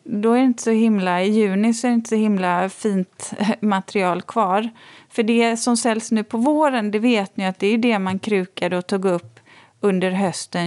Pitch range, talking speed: 185-230 Hz, 210 wpm